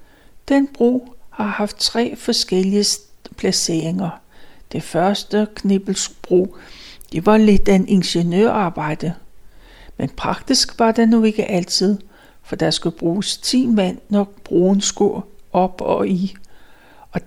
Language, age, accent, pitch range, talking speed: Danish, 60-79, native, 185-225 Hz, 125 wpm